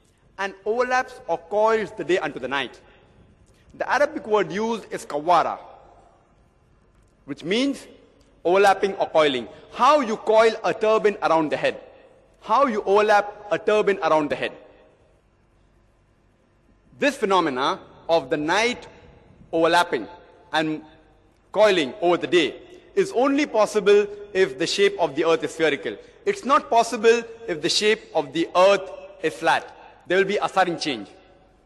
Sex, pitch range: male, 165-230 Hz